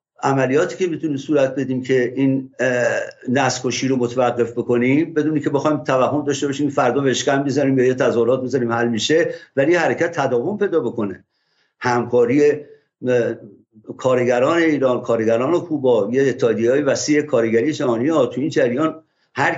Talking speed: 140 wpm